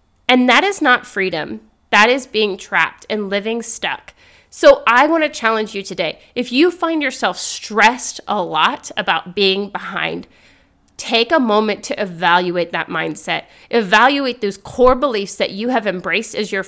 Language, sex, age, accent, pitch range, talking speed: English, female, 30-49, American, 205-260 Hz, 165 wpm